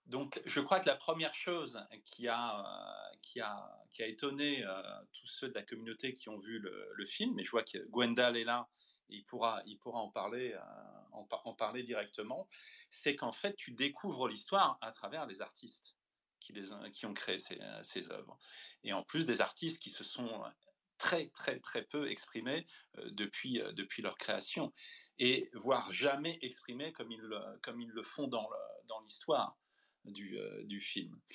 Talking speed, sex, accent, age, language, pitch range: 185 wpm, male, French, 30-49, English, 115-155 Hz